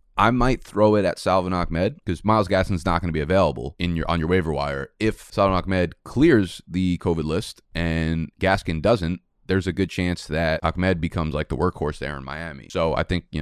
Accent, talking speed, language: American, 215 wpm, English